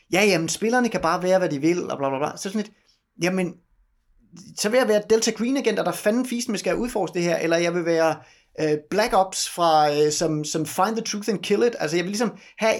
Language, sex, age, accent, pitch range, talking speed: Danish, male, 30-49, native, 160-210 Hz, 260 wpm